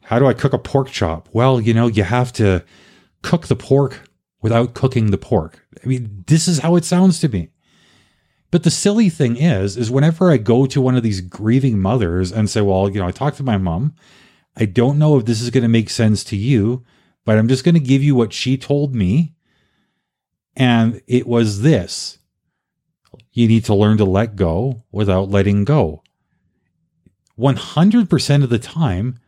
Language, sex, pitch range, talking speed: English, male, 110-150 Hz, 195 wpm